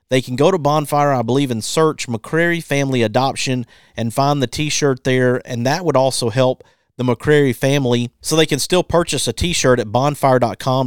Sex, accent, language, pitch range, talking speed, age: male, American, English, 120-145 Hz, 200 wpm, 40-59